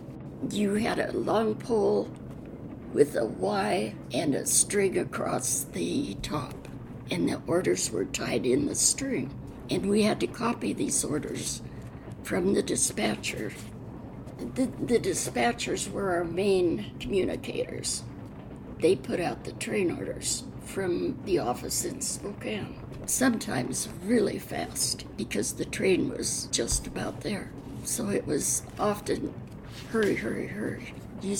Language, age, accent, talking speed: English, 60-79, American, 130 wpm